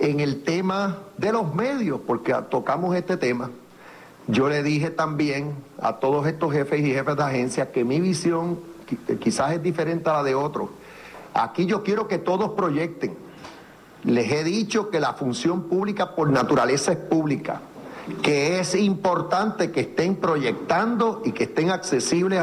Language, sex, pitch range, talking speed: Spanish, male, 150-190 Hz, 160 wpm